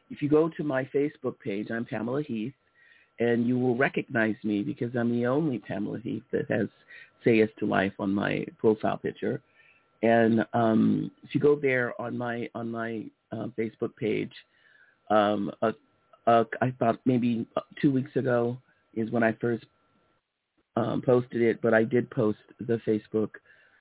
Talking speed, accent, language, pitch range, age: 165 wpm, American, English, 110-125 Hz, 50-69